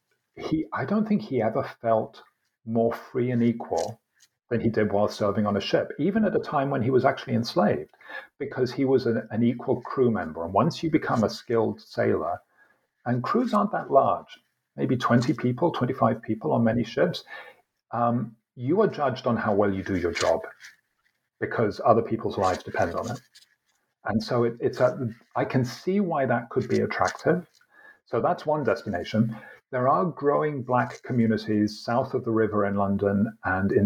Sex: male